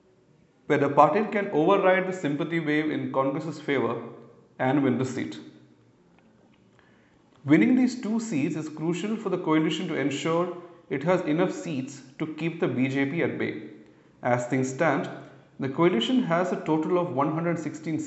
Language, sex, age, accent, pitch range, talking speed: English, male, 40-59, Indian, 130-175 Hz, 155 wpm